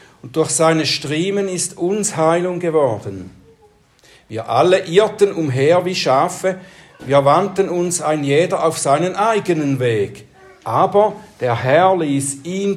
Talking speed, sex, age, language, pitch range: 130 wpm, male, 60-79, German, 135-170 Hz